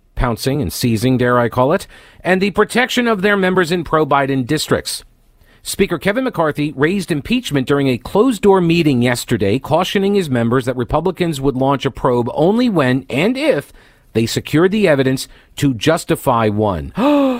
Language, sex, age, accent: English, male, 50-69, American